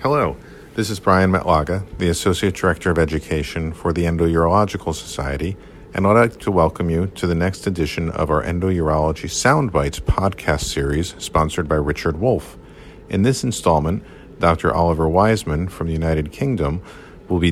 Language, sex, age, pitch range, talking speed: English, male, 50-69, 85-110 Hz, 160 wpm